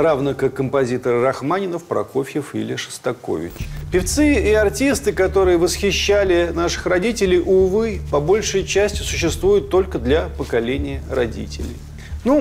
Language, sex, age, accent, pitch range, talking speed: Russian, male, 40-59, native, 130-205 Hz, 115 wpm